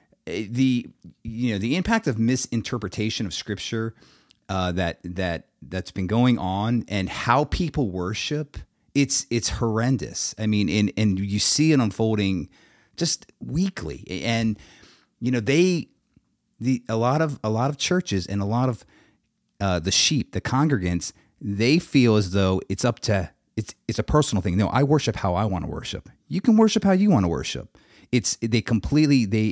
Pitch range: 100-140 Hz